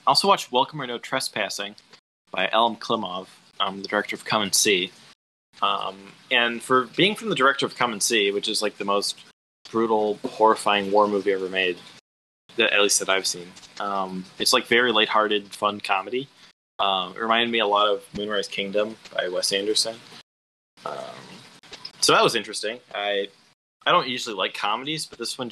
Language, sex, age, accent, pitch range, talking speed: English, male, 20-39, American, 100-125 Hz, 180 wpm